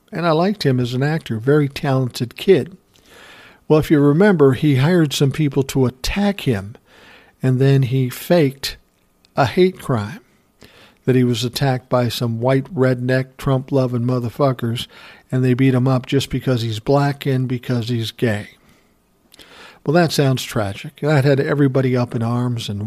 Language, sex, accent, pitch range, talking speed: English, male, American, 120-150 Hz, 165 wpm